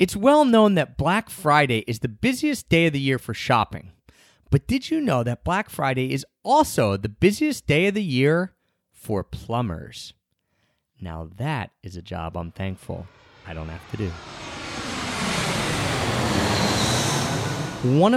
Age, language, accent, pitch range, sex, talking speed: 30-49, English, American, 115-155 Hz, male, 150 wpm